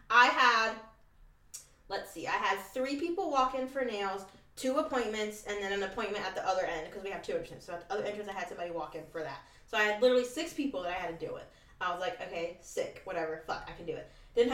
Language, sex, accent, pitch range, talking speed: English, female, American, 180-245 Hz, 260 wpm